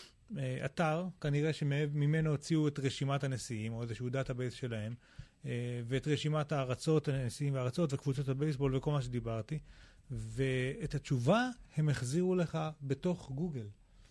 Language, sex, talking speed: Hebrew, male, 130 wpm